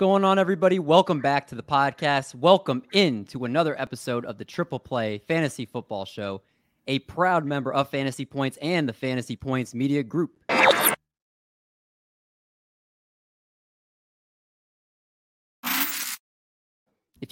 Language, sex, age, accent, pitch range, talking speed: English, male, 30-49, American, 120-155 Hz, 115 wpm